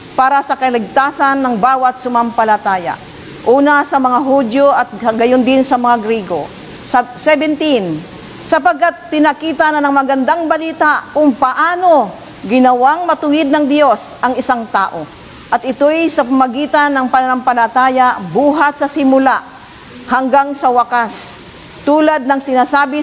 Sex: female